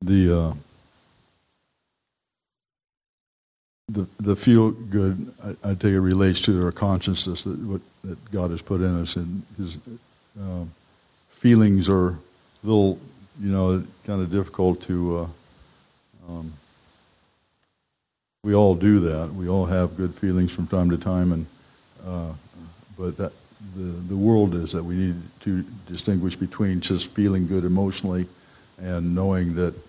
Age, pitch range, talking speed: 60-79, 90-100 Hz, 145 wpm